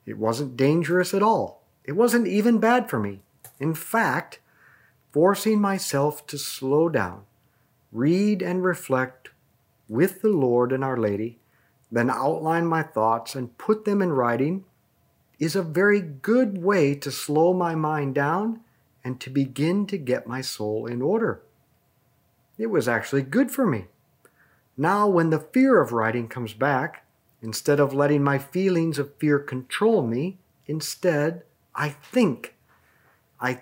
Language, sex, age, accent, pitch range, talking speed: English, male, 50-69, American, 130-190 Hz, 145 wpm